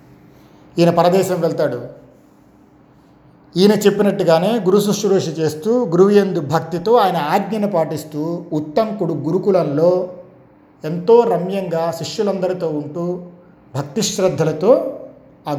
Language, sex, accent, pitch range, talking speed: Telugu, male, native, 150-195 Hz, 85 wpm